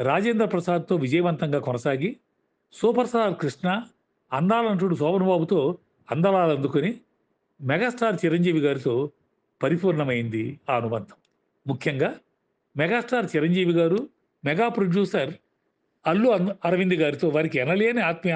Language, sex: Telugu, male